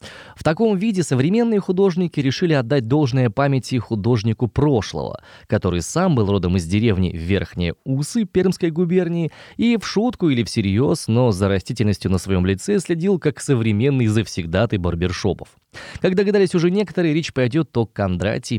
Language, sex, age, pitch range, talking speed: Russian, male, 20-39, 100-160 Hz, 145 wpm